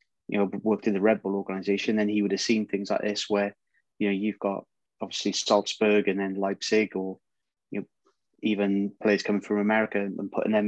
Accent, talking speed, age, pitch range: British, 210 wpm, 20-39, 100-105 Hz